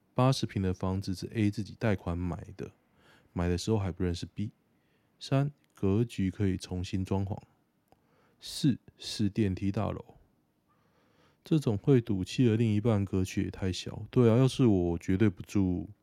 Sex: male